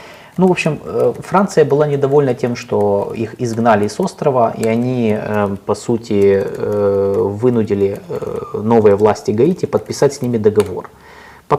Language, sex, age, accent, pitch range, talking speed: Russian, male, 30-49, native, 105-140 Hz, 130 wpm